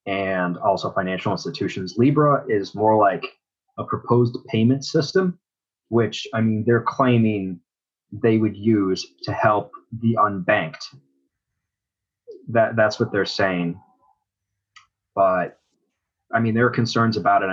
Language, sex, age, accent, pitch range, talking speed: English, male, 30-49, American, 95-125 Hz, 125 wpm